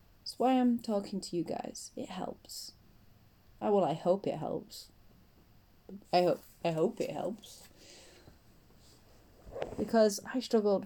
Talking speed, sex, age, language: 145 wpm, female, 30-49, English